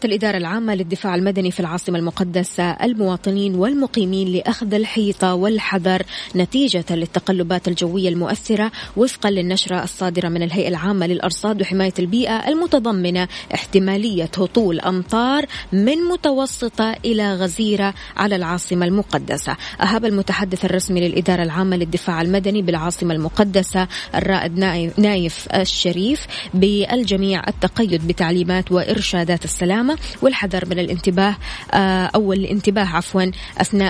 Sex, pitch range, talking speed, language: female, 180-215 Hz, 105 wpm, Arabic